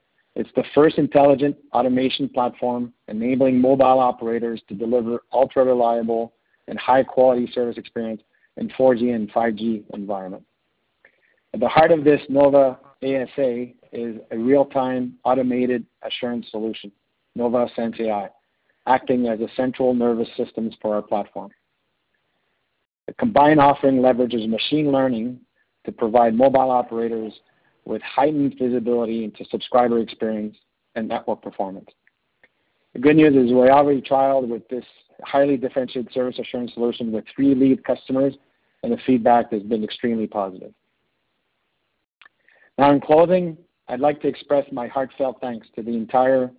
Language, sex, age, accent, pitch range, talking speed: English, male, 40-59, American, 115-135 Hz, 135 wpm